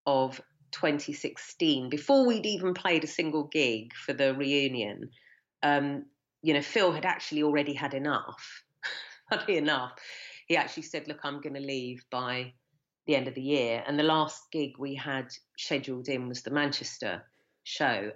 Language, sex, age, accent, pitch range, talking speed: English, female, 40-59, British, 140-170 Hz, 160 wpm